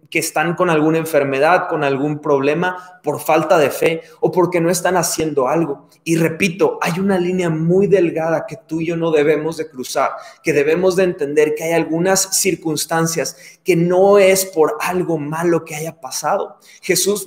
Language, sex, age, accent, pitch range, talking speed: Spanish, male, 30-49, Mexican, 155-195 Hz, 175 wpm